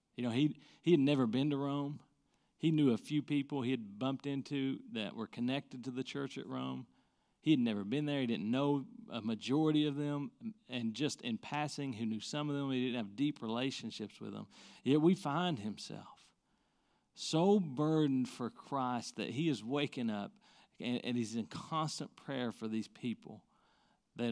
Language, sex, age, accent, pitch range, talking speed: English, male, 40-59, American, 120-150 Hz, 190 wpm